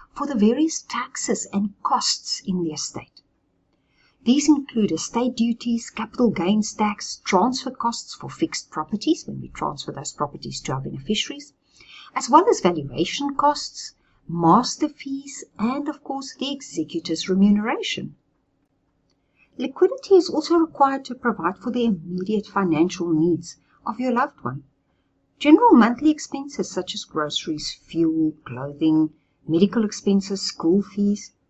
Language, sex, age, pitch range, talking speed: English, female, 50-69, 165-270 Hz, 130 wpm